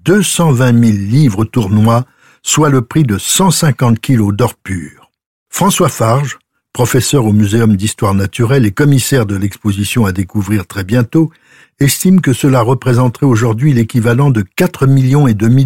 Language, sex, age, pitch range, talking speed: French, male, 60-79, 115-150 Hz, 145 wpm